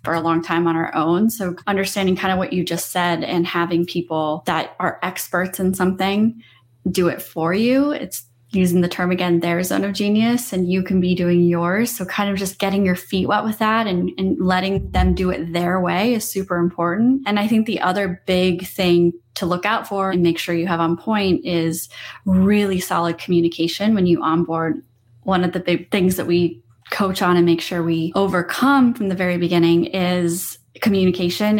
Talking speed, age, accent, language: 205 wpm, 20-39, American, English